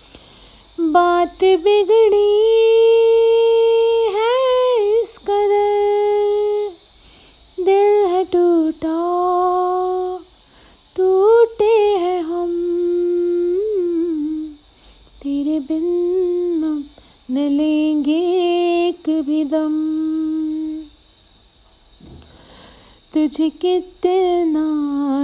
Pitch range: 305-360 Hz